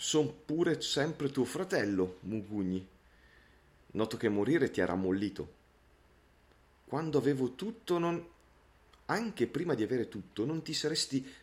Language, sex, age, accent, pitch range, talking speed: Italian, male, 40-59, native, 85-130 Hz, 125 wpm